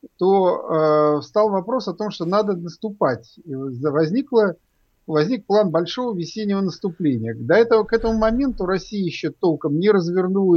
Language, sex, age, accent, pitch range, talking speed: Russian, male, 50-69, native, 155-195 Hz, 150 wpm